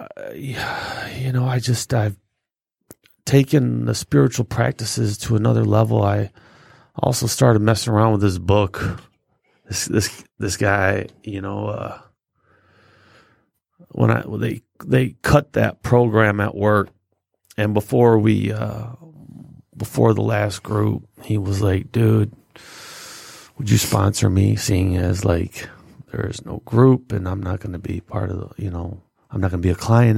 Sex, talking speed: male, 155 wpm